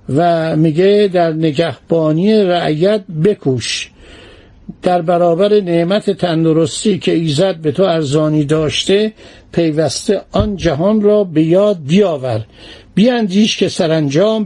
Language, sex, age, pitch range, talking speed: Persian, male, 60-79, 155-210 Hz, 110 wpm